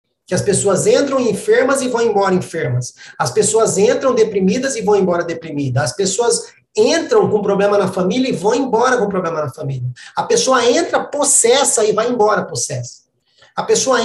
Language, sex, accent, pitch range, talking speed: Portuguese, male, Brazilian, 185-260 Hz, 175 wpm